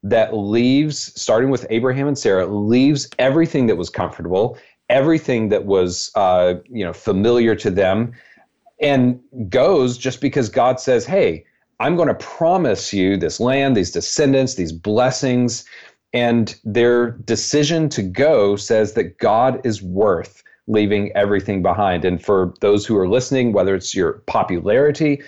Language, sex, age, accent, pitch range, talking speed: English, male, 40-59, American, 105-145 Hz, 145 wpm